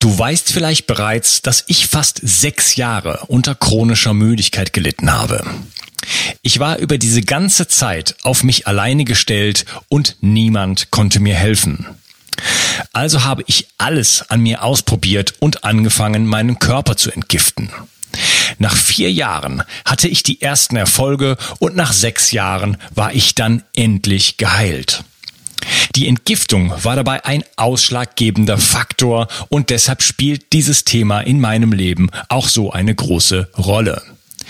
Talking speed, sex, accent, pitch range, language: 135 wpm, male, German, 105-135 Hz, German